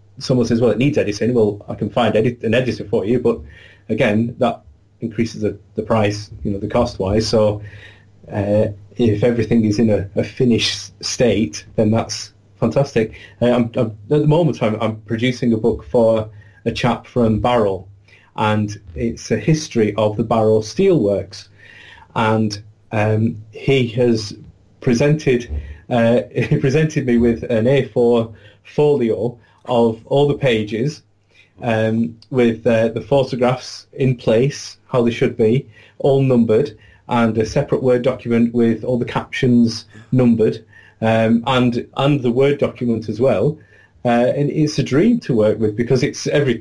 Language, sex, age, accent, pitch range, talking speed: English, male, 30-49, British, 105-125 Hz, 155 wpm